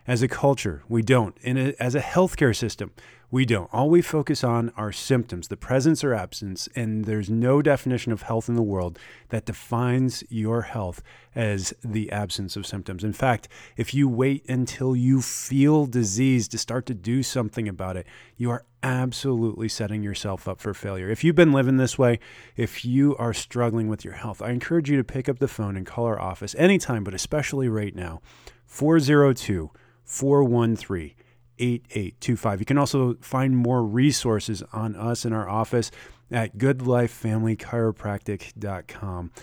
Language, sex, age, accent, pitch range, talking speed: English, male, 30-49, American, 105-130 Hz, 165 wpm